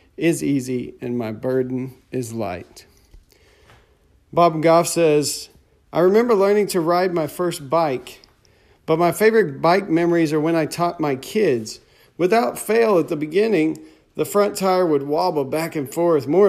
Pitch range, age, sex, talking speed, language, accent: 140-180 Hz, 40-59, male, 155 wpm, English, American